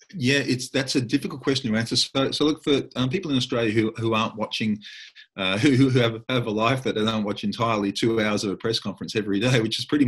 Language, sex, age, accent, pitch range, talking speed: English, male, 40-59, Australian, 100-120 Hz, 255 wpm